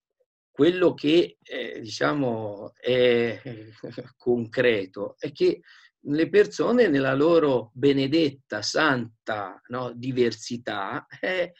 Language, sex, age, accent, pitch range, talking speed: Italian, male, 50-69, native, 125-165 Hz, 85 wpm